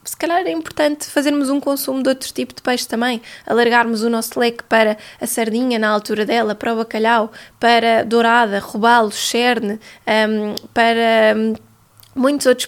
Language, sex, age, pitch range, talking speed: Portuguese, female, 20-39, 225-260 Hz, 165 wpm